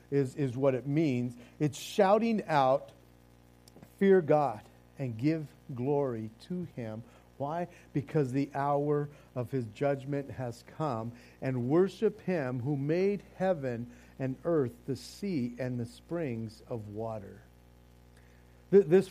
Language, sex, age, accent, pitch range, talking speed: English, male, 50-69, American, 120-180 Hz, 125 wpm